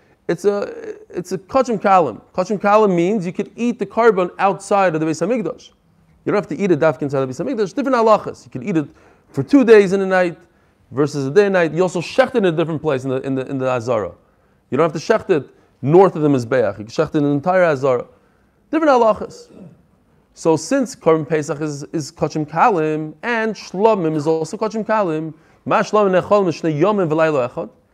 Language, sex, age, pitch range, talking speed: English, male, 20-39, 160-230 Hz, 220 wpm